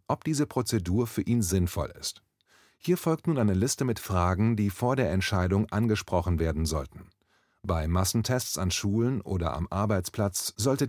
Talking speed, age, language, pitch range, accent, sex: 160 wpm, 30-49, German, 95-125 Hz, German, male